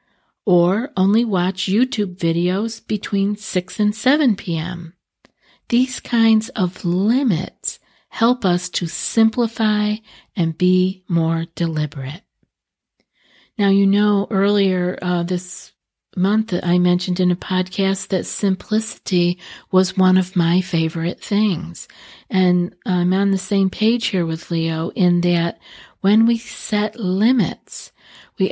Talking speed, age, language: 120 wpm, 50-69, English